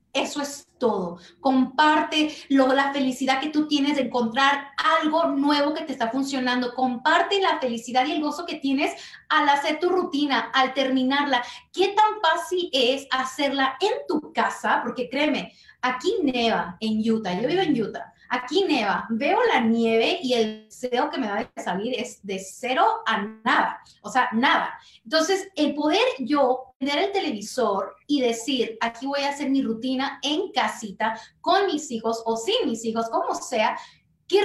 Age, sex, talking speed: 30-49, female, 170 wpm